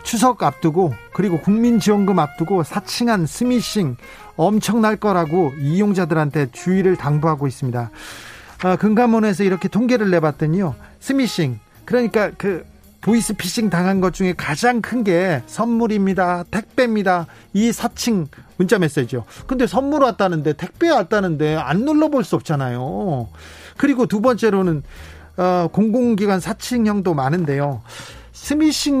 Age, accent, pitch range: 40-59, native, 155-220 Hz